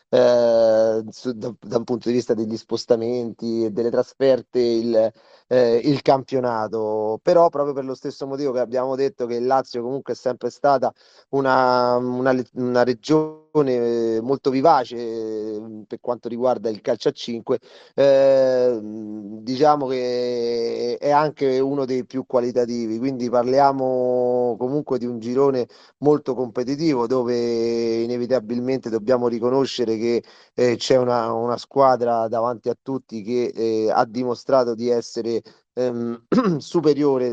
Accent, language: native, Italian